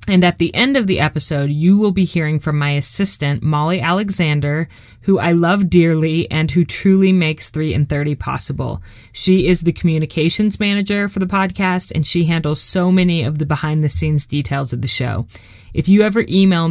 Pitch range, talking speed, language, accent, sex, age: 140-185 Hz, 195 wpm, English, American, female, 30-49